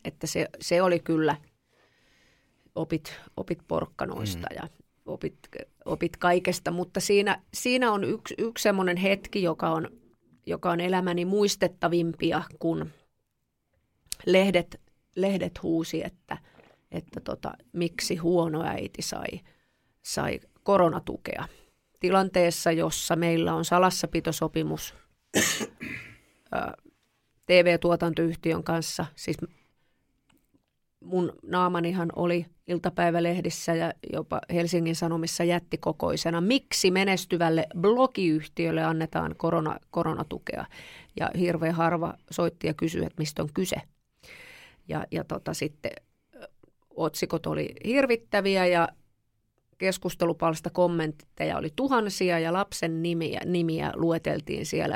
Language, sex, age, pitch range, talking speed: Finnish, female, 30-49, 160-180 Hz, 100 wpm